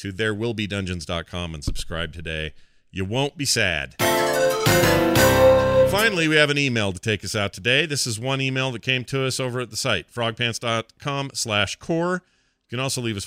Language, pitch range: English, 100-130 Hz